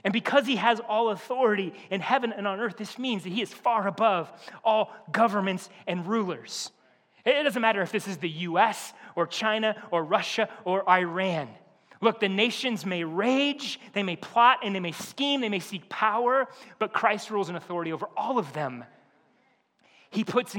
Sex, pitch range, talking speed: male, 175-225 Hz, 185 wpm